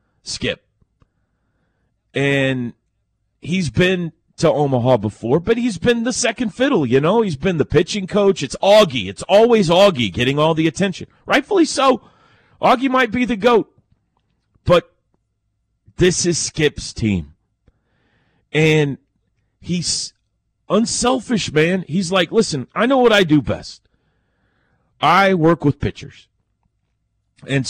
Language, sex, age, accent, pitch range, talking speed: English, male, 40-59, American, 115-170 Hz, 130 wpm